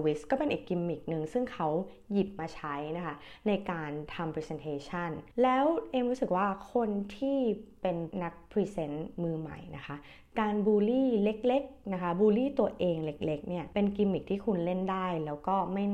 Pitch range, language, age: 160-225 Hz, Thai, 20-39